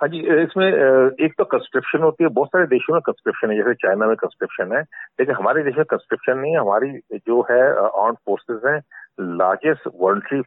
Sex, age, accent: male, 50-69, native